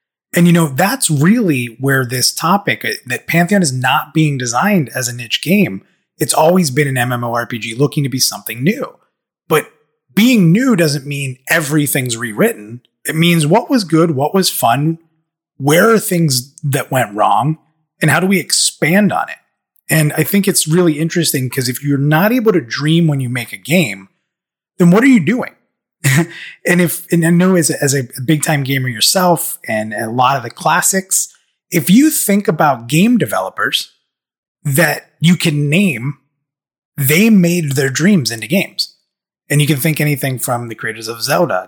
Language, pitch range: English, 130-180 Hz